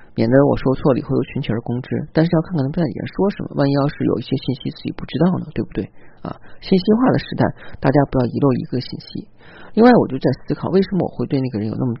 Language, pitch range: Chinese, 120-160 Hz